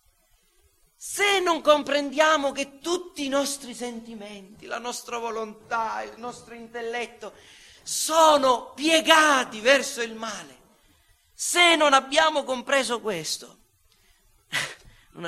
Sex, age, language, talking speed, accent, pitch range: male, 40-59, Italian, 100 wpm, native, 140-220 Hz